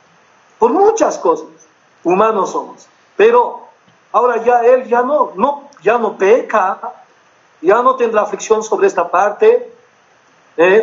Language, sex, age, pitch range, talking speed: Spanish, male, 50-69, 180-275 Hz, 125 wpm